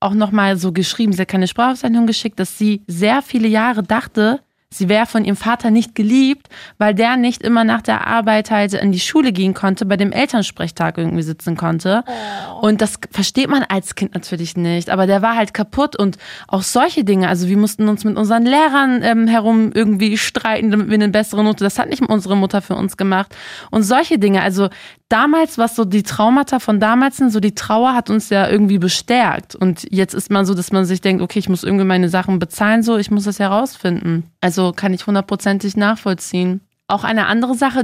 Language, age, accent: German, 20-39, German